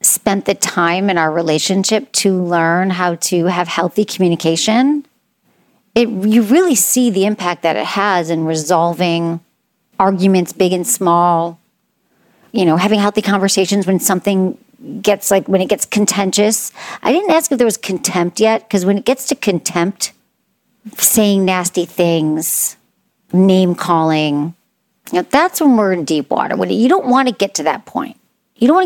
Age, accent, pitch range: 40-59, American, 175-220 Hz